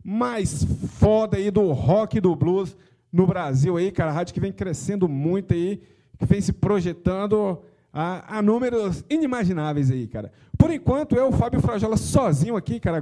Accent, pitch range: Brazilian, 145-210 Hz